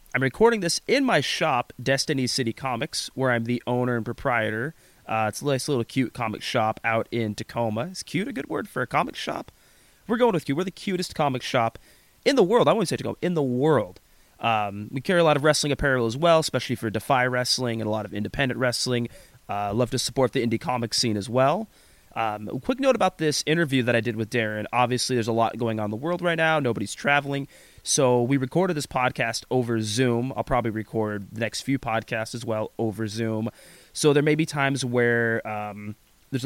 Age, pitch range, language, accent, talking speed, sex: 30-49, 110-140 Hz, English, American, 220 wpm, male